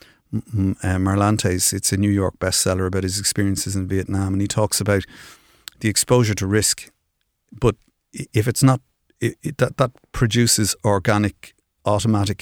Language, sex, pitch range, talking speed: English, male, 95-110 Hz, 150 wpm